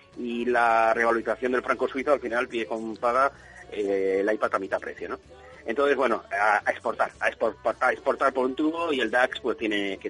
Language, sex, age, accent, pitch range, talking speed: Spanish, male, 40-59, Spanish, 115-180 Hz, 215 wpm